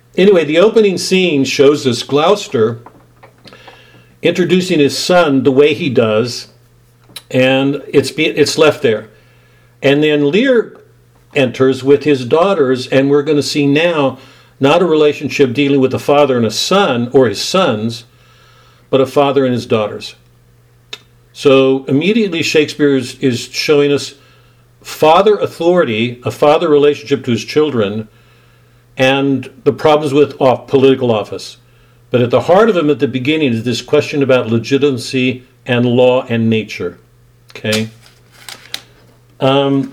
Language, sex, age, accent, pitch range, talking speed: English, male, 50-69, American, 120-145 Hz, 140 wpm